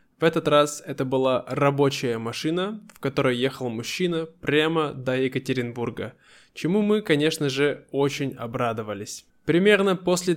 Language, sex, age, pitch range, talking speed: Russian, male, 20-39, 130-155 Hz, 125 wpm